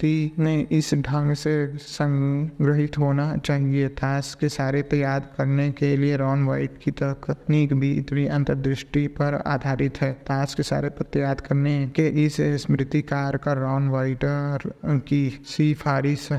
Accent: native